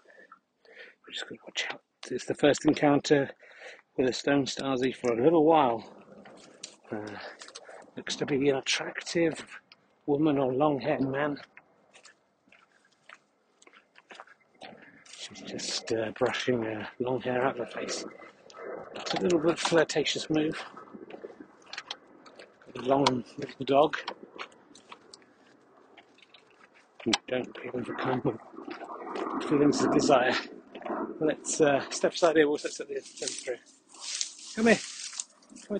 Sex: male